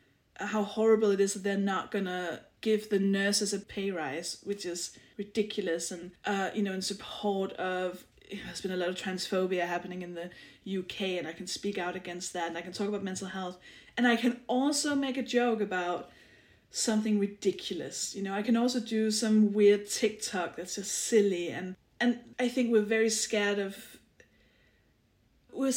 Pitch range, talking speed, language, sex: 185-225 Hz, 185 wpm, English, female